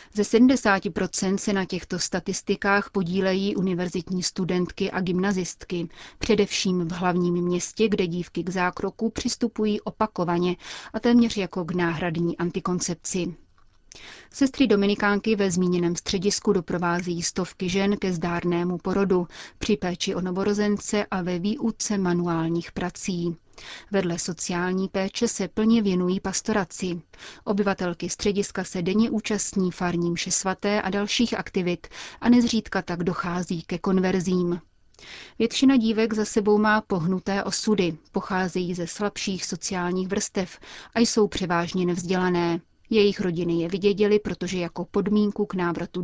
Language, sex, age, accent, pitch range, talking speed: Czech, female, 30-49, native, 180-205 Hz, 125 wpm